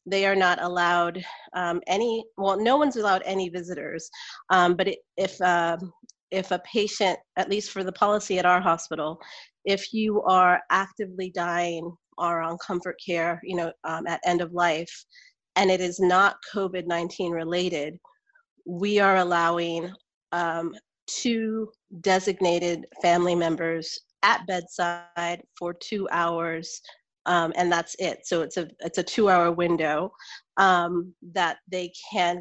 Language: English